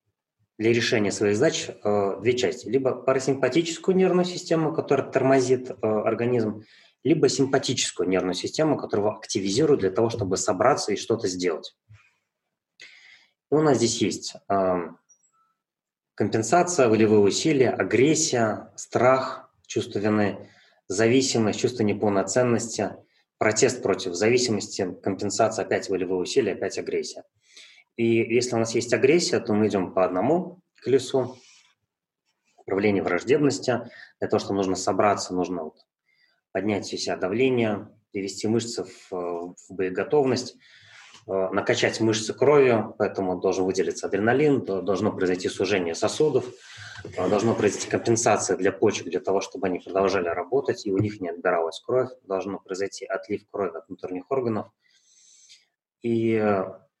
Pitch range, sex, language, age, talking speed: 100-130 Hz, male, Russian, 20-39, 120 wpm